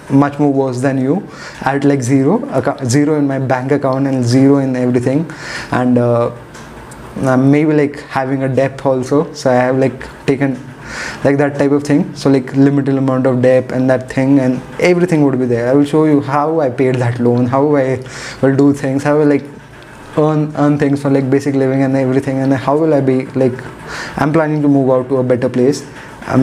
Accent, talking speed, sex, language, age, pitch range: Indian, 215 wpm, male, English, 20-39, 130-145 Hz